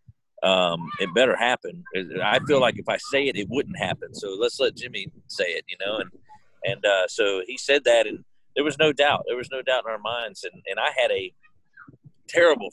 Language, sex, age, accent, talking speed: English, male, 40-59, American, 220 wpm